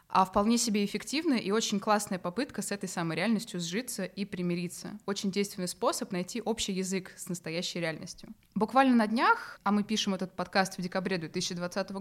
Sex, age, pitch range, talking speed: female, 20-39, 185-215 Hz, 175 wpm